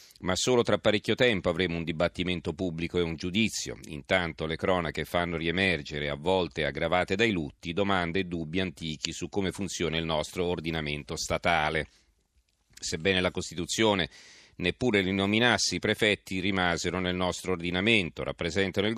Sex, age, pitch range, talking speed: male, 40-59, 85-105 Hz, 145 wpm